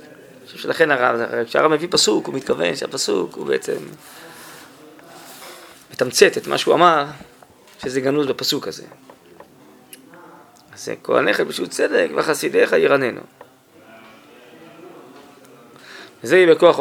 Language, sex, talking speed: Hebrew, male, 100 wpm